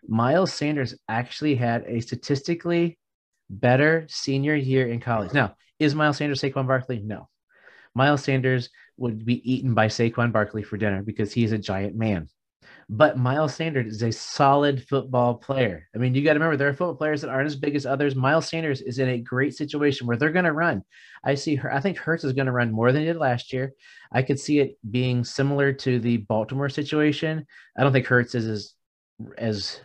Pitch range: 115-140 Hz